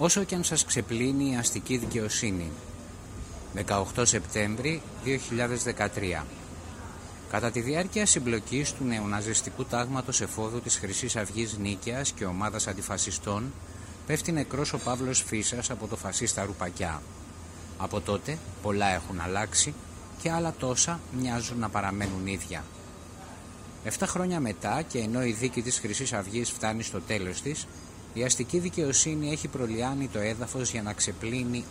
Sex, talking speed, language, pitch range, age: male, 135 wpm, Greek, 95-130 Hz, 30-49